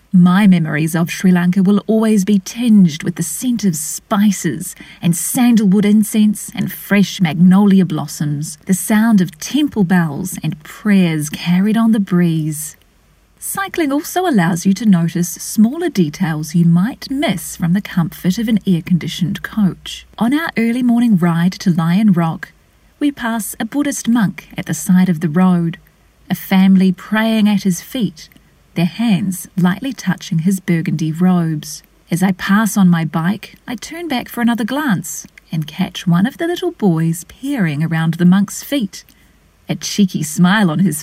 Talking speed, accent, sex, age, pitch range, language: 165 wpm, Australian, female, 30-49, 170-215 Hz, English